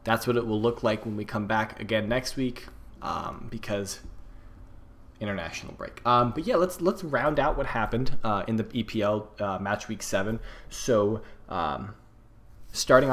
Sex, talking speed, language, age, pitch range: male, 170 wpm, English, 20-39, 100-115 Hz